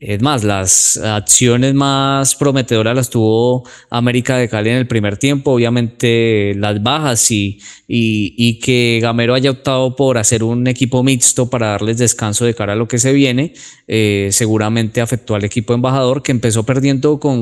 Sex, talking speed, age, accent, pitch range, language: male, 170 wpm, 20-39, Colombian, 115-145 Hz, Spanish